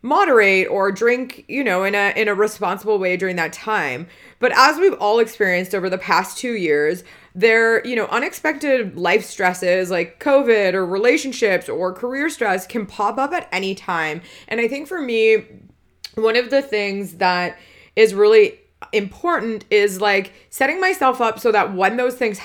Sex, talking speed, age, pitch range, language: female, 175 wpm, 20-39, 180-230 Hz, English